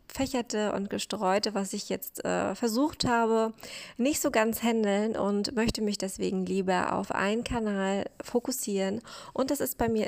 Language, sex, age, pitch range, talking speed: German, female, 20-39, 205-240 Hz, 160 wpm